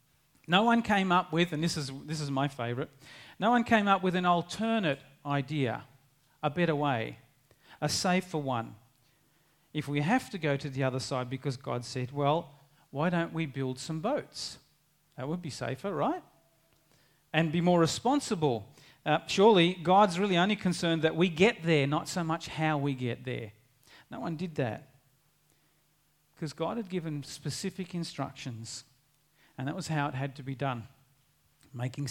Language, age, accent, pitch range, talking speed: English, 40-59, Australian, 145-180 Hz, 170 wpm